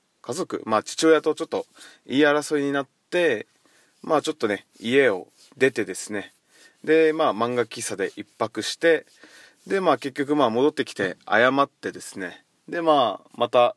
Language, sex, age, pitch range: Japanese, male, 20-39, 110-155 Hz